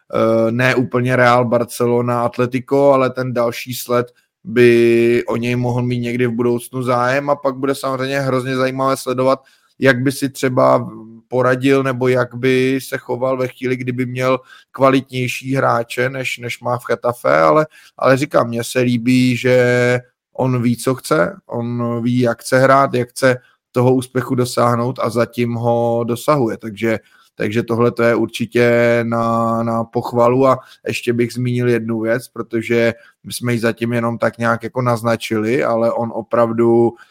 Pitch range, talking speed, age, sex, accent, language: 120-135 Hz, 160 wpm, 20-39, male, native, Czech